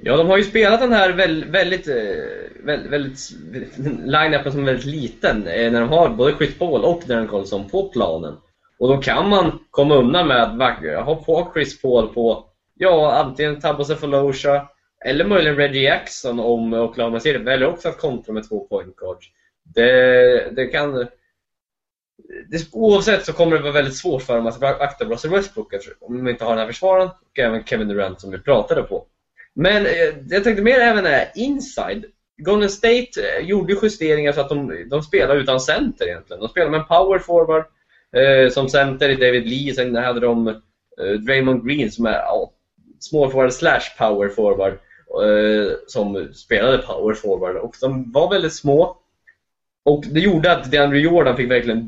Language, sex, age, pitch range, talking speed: Swedish, male, 20-39, 125-190 Hz, 185 wpm